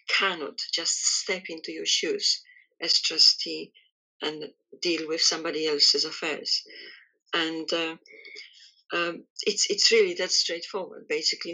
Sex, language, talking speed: female, English, 120 wpm